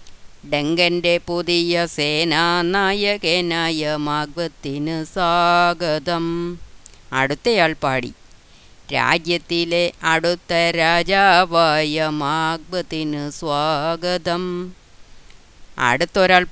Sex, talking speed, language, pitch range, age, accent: female, 45 wpm, Malayalam, 145-175 Hz, 30-49, native